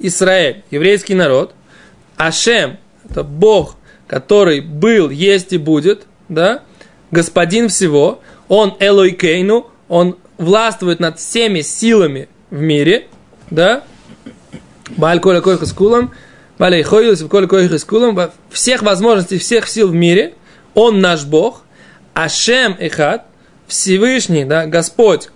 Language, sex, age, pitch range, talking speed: Russian, male, 20-39, 165-215 Hz, 100 wpm